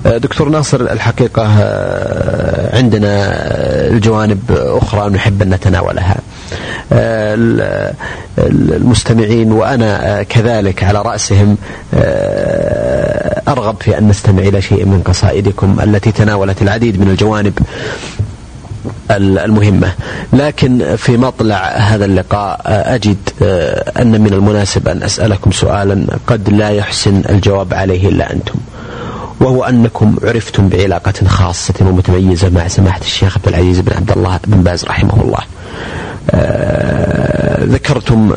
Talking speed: 105 wpm